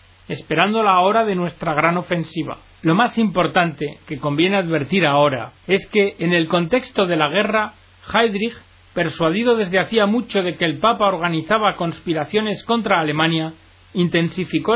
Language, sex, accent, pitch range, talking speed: Spanish, male, Spanish, 160-205 Hz, 145 wpm